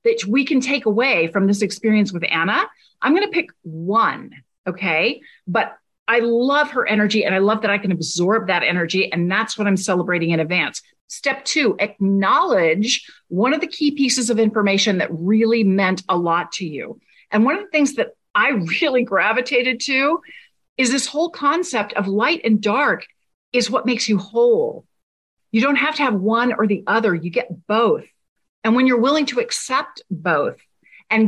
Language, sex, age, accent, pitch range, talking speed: English, female, 40-59, American, 200-270 Hz, 185 wpm